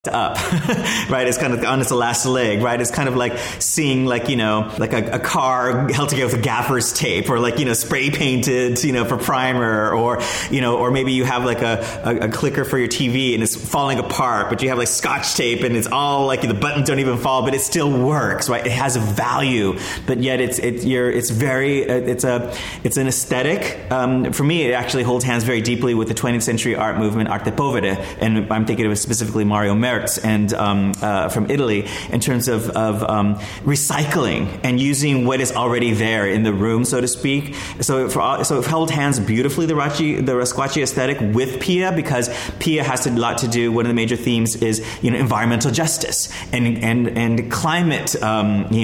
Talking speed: 220 wpm